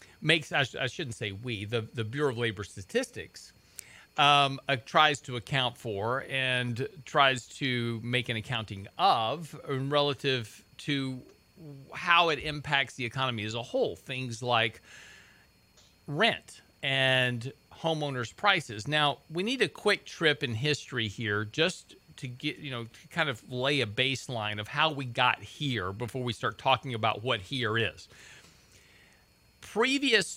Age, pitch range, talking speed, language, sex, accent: 40-59, 120-155 Hz, 150 wpm, English, male, American